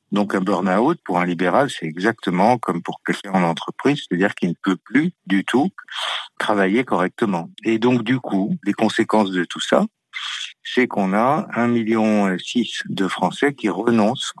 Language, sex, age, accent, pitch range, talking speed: French, male, 60-79, French, 95-115 Hz, 165 wpm